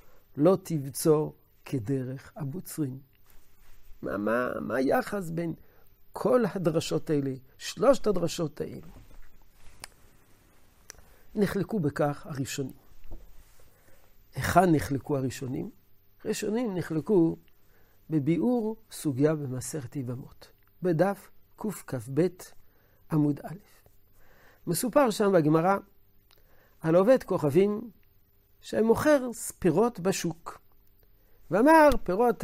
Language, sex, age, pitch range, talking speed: Hebrew, male, 60-79, 125-185 Hz, 75 wpm